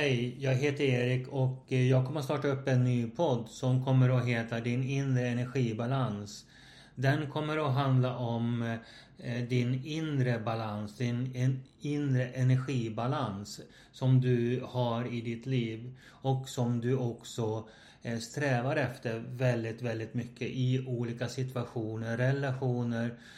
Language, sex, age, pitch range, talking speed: Swedish, male, 30-49, 120-135 Hz, 130 wpm